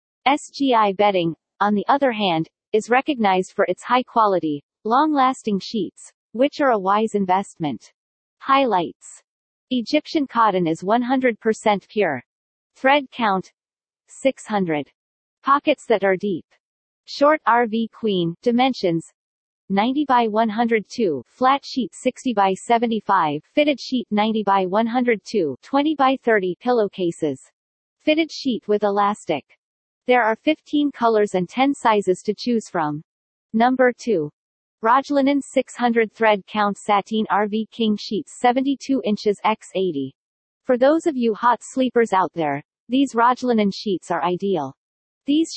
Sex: female